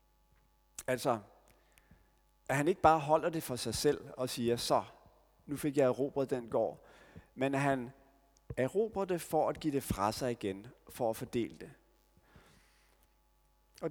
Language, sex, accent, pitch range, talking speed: Danish, male, native, 120-160 Hz, 155 wpm